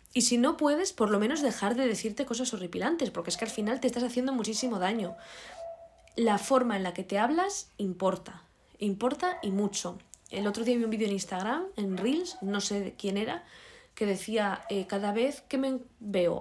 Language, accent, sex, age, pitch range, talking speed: Spanish, Spanish, female, 20-39, 190-255 Hz, 200 wpm